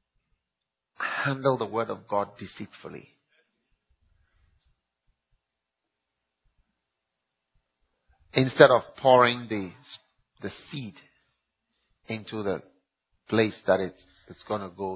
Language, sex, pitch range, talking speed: English, male, 90-130 Hz, 85 wpm